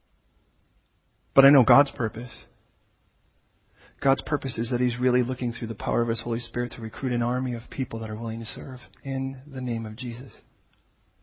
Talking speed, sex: 185 wpm, male